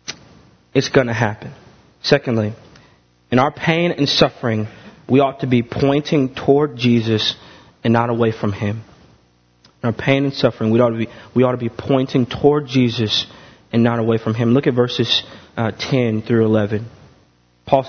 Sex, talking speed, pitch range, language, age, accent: male, 170 wpm, 115-165 Hz, English, 30-49, American